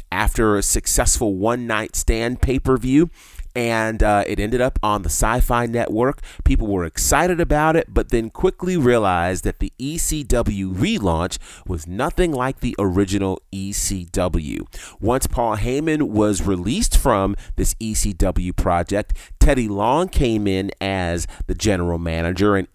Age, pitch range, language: 30-49, 95-130 Hz, English